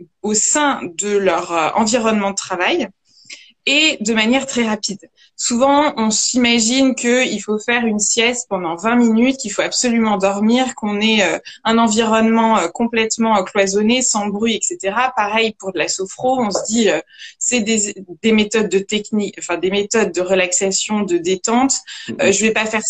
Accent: French